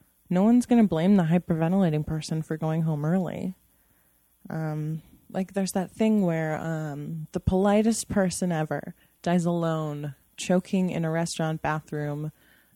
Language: English